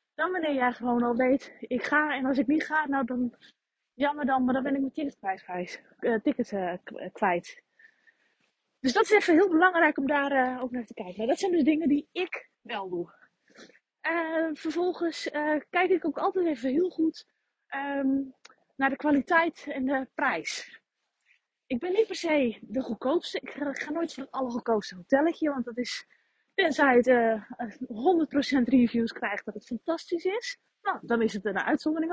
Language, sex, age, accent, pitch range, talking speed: Dutch, female, 20-39, Dutch, 245-330 Hz, 180 wpm